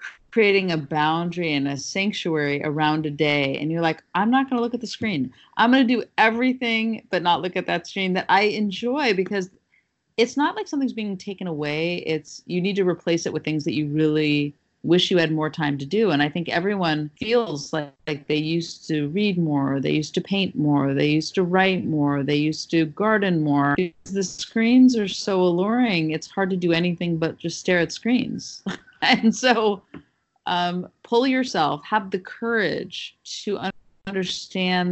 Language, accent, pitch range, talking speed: English, American, 150-195 Hz, 190 wpm